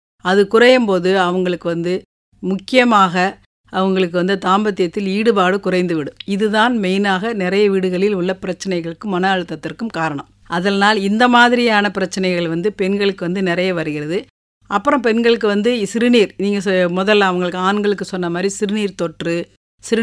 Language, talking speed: English, 150 wpm